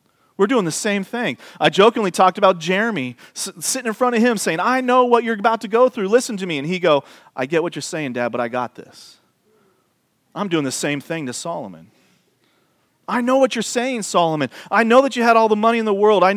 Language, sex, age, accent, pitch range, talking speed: English, male, 40-59, American, 175-245 Hz, 240 wpm